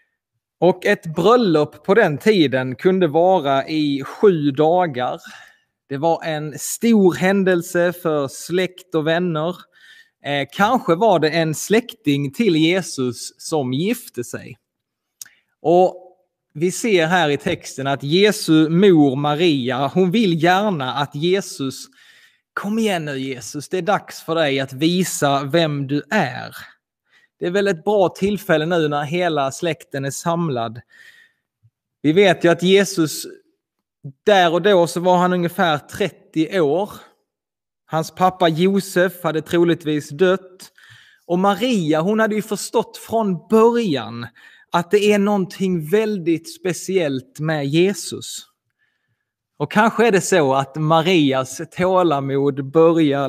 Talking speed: 130 wpm